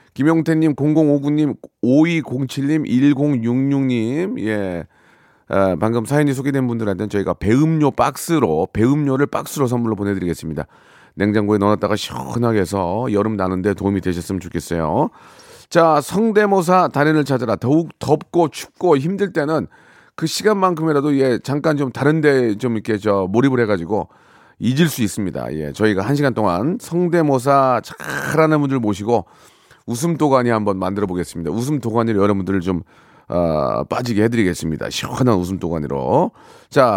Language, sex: Korean, male